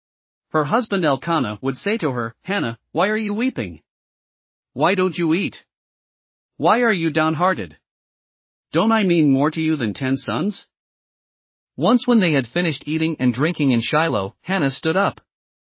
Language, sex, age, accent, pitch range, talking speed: English, male, 40-59, American, 135-180 Hz, 160 wpm